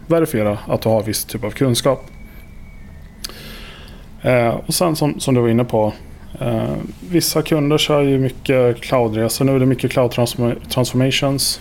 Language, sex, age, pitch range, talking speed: Swedish, male, 20-39, 105-130 Hz, 165 wpm